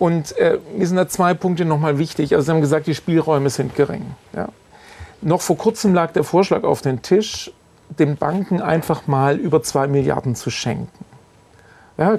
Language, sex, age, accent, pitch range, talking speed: German, male, 50-69, German, 140-175 Hz, 180 wpm